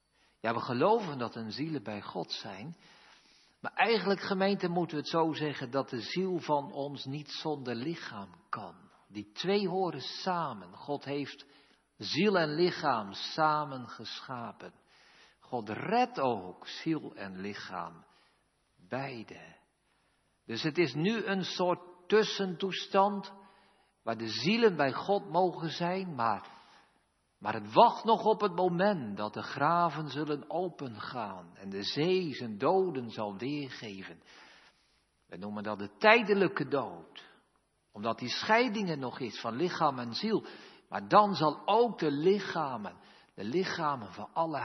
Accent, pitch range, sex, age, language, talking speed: Dutch, 115-185 Hz, male, 50-69, Dutch, 140 wpm